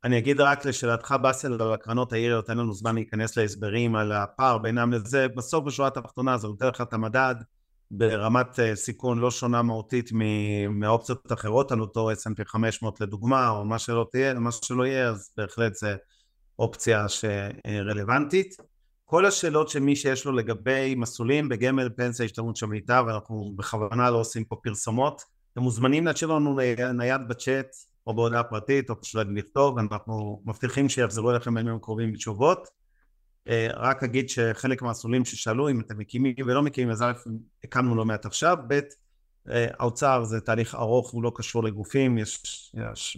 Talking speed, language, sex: 155 wpm, Hebrew, male